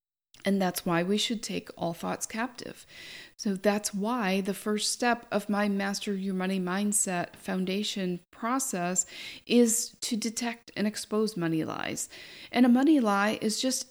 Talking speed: 155 wpm